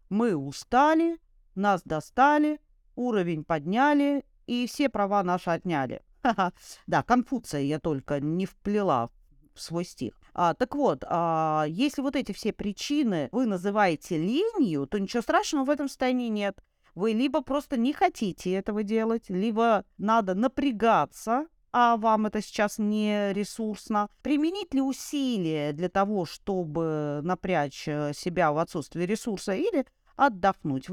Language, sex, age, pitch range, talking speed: Russian, female, 40-59, 170-245 Hz, 130 wpm